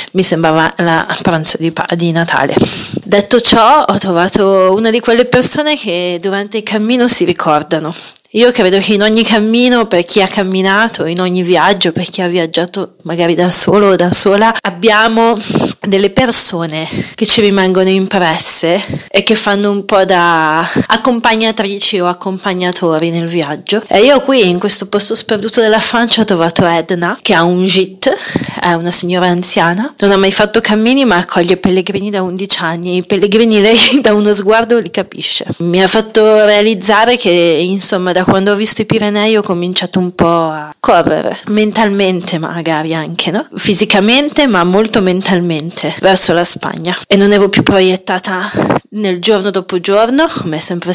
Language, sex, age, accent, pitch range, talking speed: Italian, female, 30-49, native, 175-215 Hz, 165 wpm